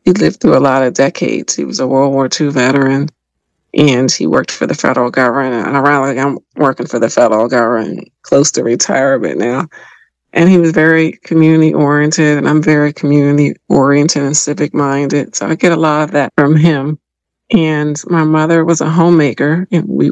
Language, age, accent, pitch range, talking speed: English, 40-59, American, 135-160 Hz, 195 wpm